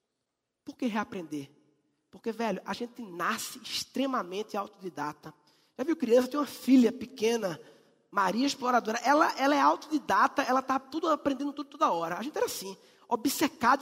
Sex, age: male, 20-39